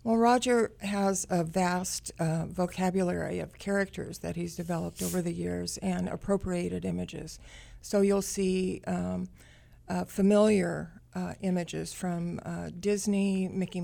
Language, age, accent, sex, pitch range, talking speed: English, 60-79, American, female, 175-195 Hz, 130 wpm